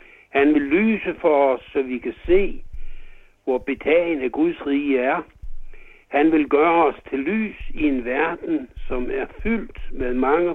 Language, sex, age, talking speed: Danish, male, 60-79, 160 wpm